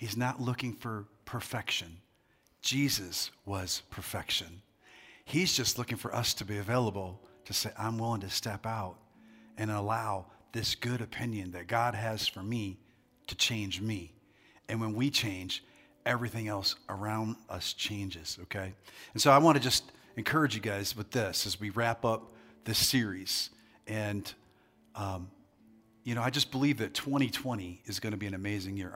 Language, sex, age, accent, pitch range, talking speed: English, male, 40-59, American, 105-130 Hz, 165 wpm